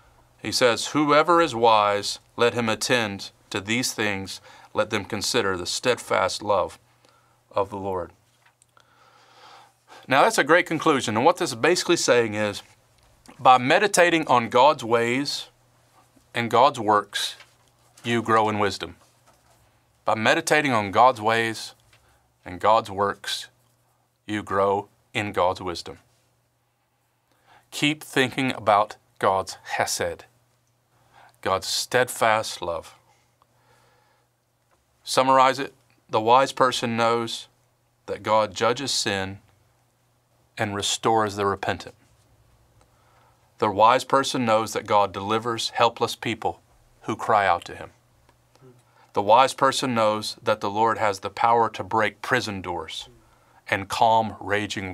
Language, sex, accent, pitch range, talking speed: English, male, American, 105-130 Hz, 120 wpm